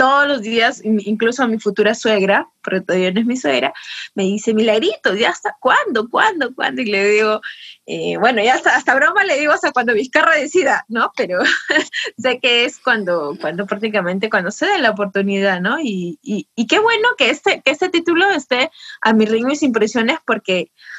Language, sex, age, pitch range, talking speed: Spanish, female, 20-39, 215-275 Hz, 205 wpm